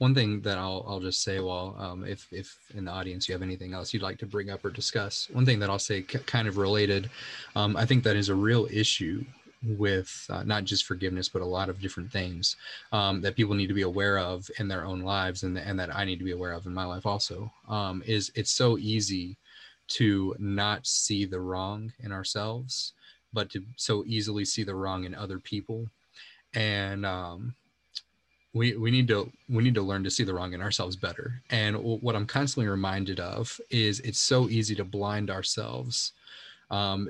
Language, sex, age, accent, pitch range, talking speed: English, male, 20-39, American, 95-110 Hz, 215 wpm